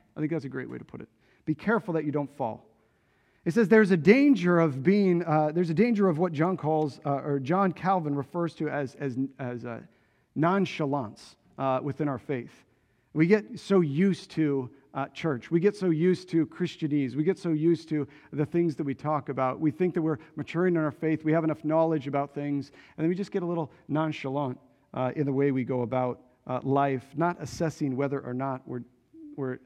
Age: 40-59